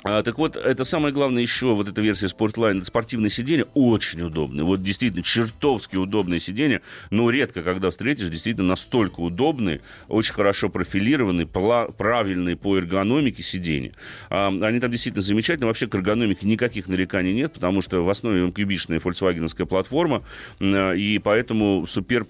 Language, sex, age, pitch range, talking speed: Russian, male, 30-49, 90-115 Hz, 145 wpm